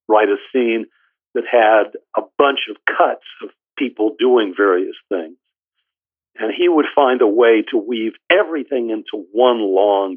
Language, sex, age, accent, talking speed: English, male, 60-79, American, 155 wpm